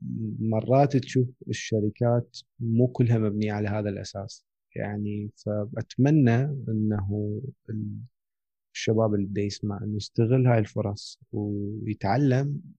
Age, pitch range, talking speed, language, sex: 30-49, 100-120 Hz, 95 wpm, Arabic, male